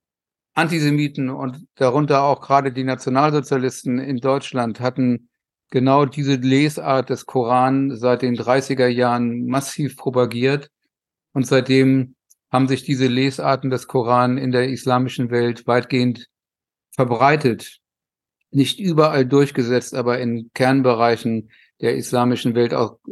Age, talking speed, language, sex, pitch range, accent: 50-69, 115 wpm, German, male, 125-135 Hz, German